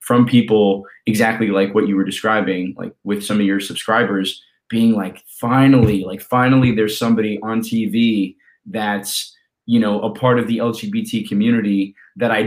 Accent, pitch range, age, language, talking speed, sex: American, 105-120 Hz, 20-39, English, 165 wpm, male